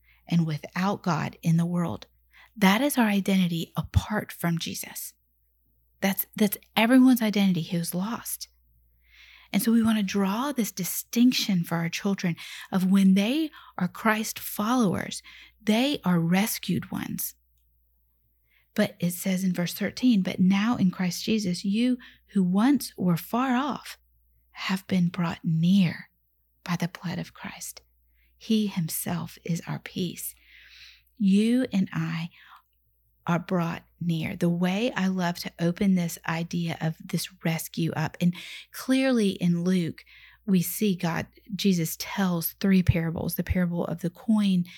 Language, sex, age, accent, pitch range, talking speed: English, female, 40-59, American, 165-205 Hz, 140 wpm